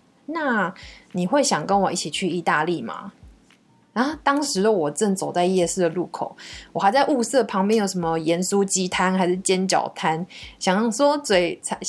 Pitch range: 180-235 Hz